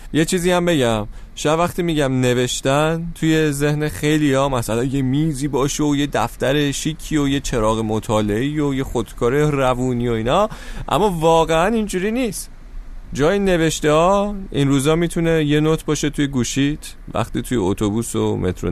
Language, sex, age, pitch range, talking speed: Persian, male, 30-49, 105-155 Hz, 155 wpm